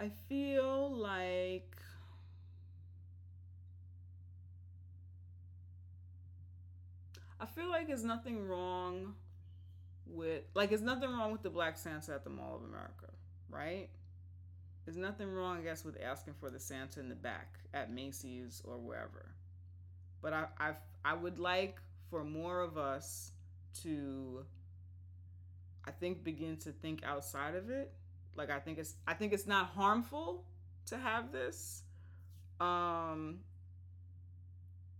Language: English